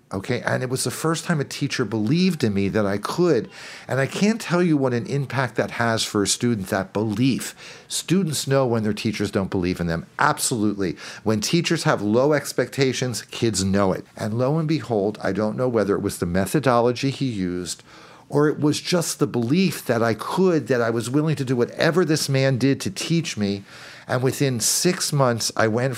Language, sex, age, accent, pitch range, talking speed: English, male, 50-69, American, 110-150 Hz, 210 wpm